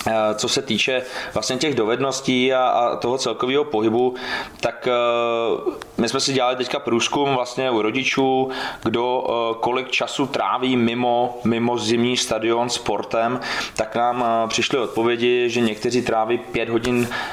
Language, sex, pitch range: Czech, male, 120-130 Hz